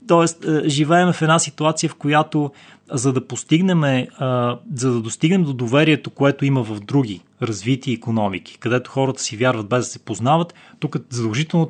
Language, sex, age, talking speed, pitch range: Bulgarian, male, 20-39, 160 wpm, 120-150 Hz